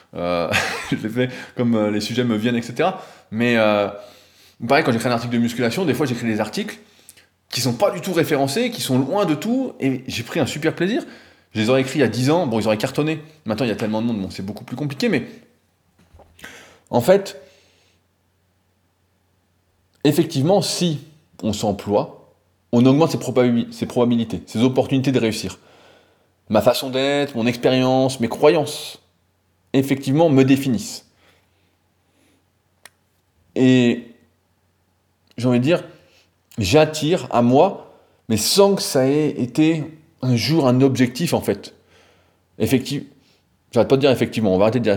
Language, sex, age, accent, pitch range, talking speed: French, male, 20-39, French, 95-135 Hz, 165 wpm